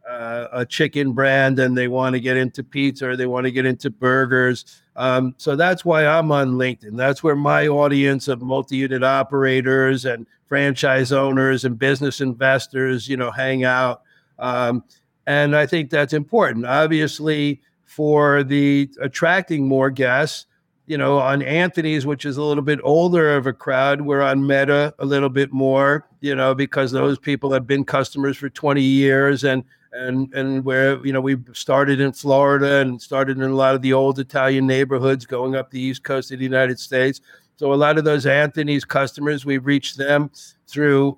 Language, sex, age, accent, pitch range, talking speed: English, male, 60-79, American, 130-150 Hz, 180 wpm